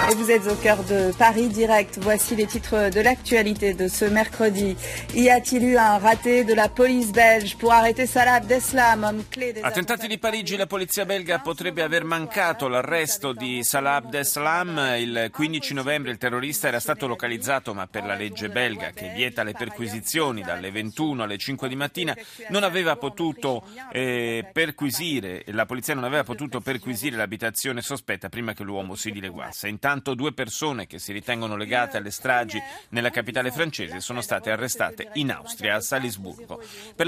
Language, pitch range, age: Italian, 120-185 Hz, 30-49